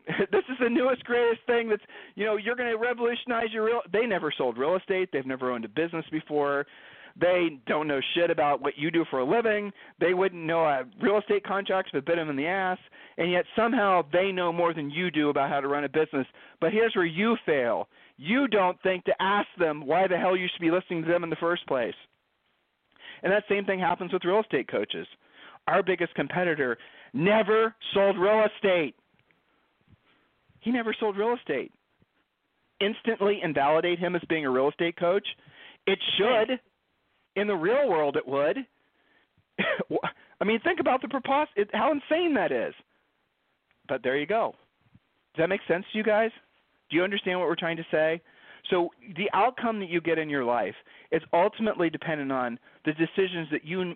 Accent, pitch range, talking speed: American, 160-215 Hz, 190 wpm